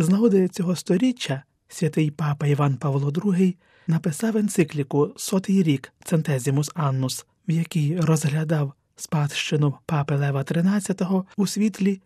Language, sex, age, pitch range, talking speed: Ukrainian, male, 30-49, 145-185 Hz, 120 wpm